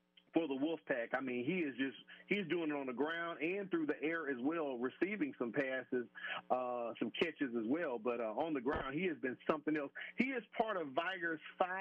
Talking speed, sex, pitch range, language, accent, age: 220 wpm, male, 135-185 Hz, English, American, 40-59